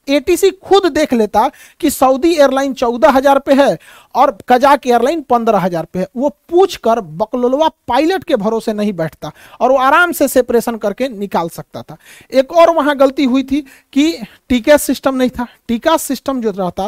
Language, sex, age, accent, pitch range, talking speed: Hindi, male, 50-69, native, 220-285 Hz, 75 wpm